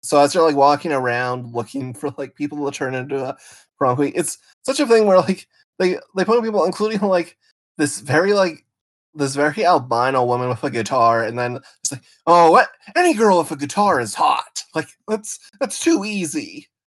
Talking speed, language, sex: 200 wpm, English, male